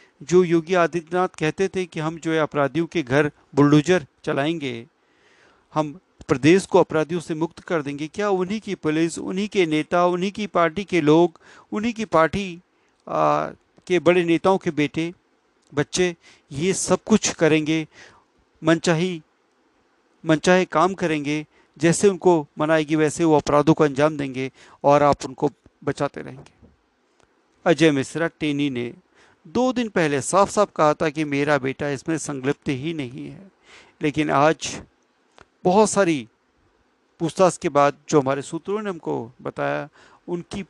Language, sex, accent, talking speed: Hindi, male, native, 145 wpm